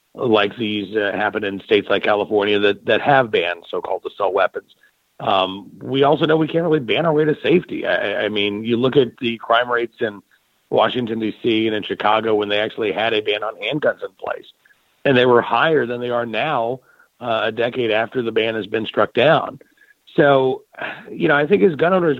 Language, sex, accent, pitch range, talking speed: English, male, American, 105-130 Hz, 210 wpm